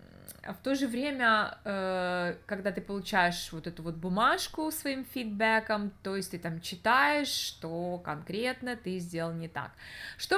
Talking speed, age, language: 145 wpm, 20-39, Russian